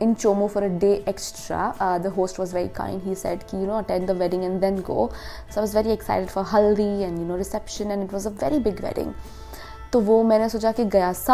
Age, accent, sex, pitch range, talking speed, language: 20-39, Indian, female, 190-230 Hz, 235 wpm, English